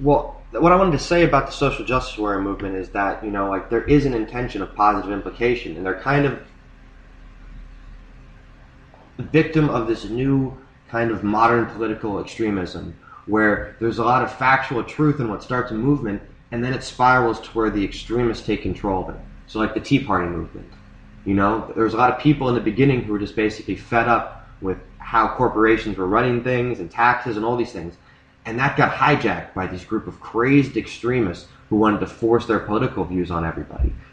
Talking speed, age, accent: 200 wpm, 20-39, American